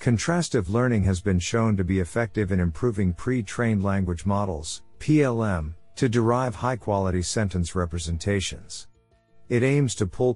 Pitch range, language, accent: 90-115 Hz, English, American